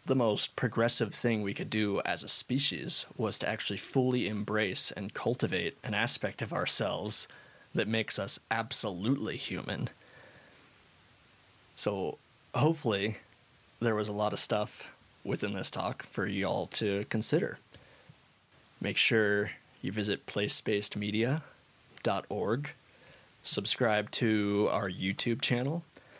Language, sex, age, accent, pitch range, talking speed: English, male, 20-39, American, 105-120 Hz, 115 wpm